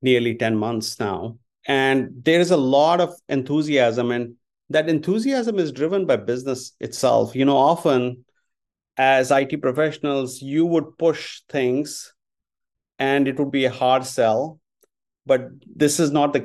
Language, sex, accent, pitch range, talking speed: English, male, Indian, 130-155 Hz, 145 wpm